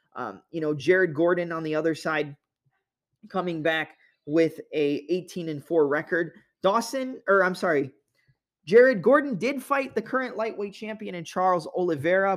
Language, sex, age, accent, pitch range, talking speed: English, male, 20-39, American, 155-190 Hz, 155 wpm